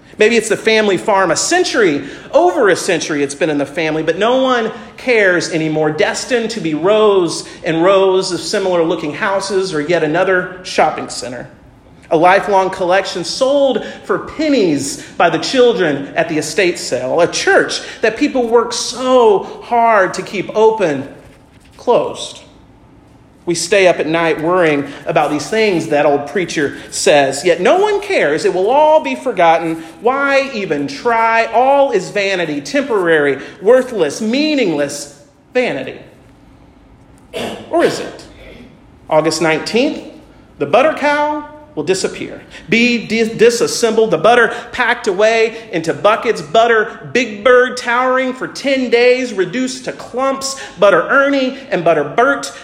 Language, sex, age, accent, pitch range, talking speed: English, male, 40-59, American, 170-255 Hz, 140 wpm